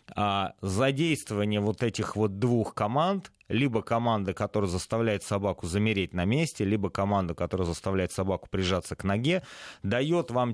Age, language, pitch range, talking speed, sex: 30-49, Russian, 95-120 Hz, 135 wpm, male